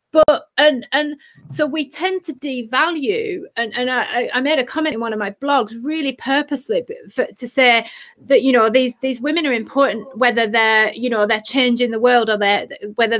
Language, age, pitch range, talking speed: English, 30-49, 225-280 Hz, 200 wpm